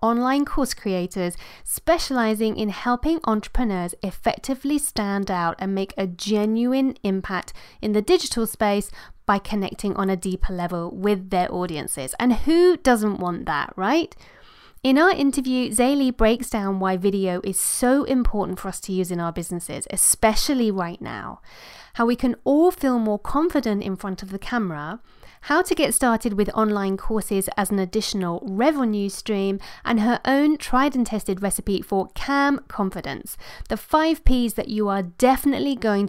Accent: British